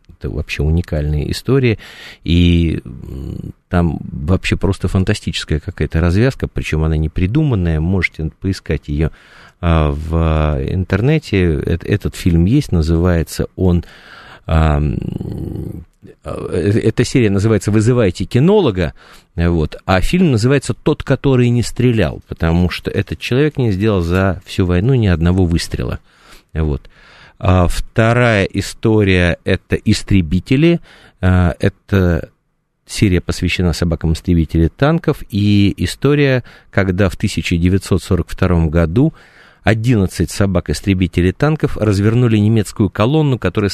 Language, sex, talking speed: Russian, male, 105 wpm